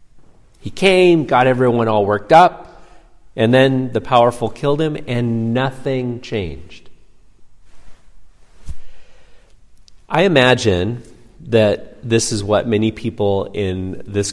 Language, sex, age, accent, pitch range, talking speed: English, male, 40-59, American, 95-115 Hz, 110 wpm